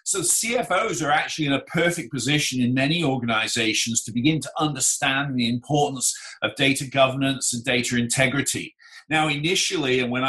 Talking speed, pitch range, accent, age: 155 wpm, 125-155 Hz, British, 50-69